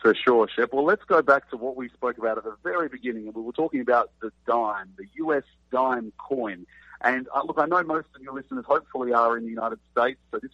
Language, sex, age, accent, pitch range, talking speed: English, male, 50-69, Australian, 120-155 Hz, 250 wpm